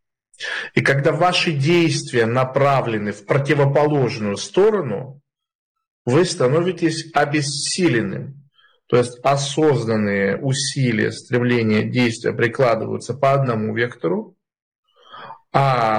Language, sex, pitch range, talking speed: Russian, male, 120-170 Hz, 85 wpm